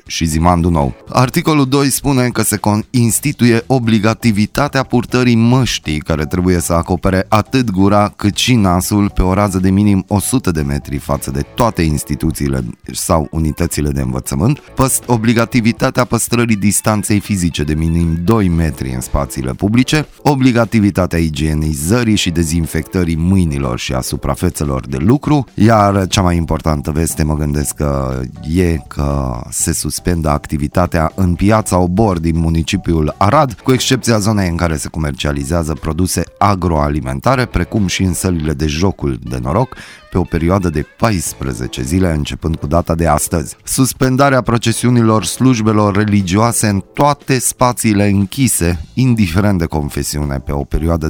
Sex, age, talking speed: male, 20-39, 140 wpm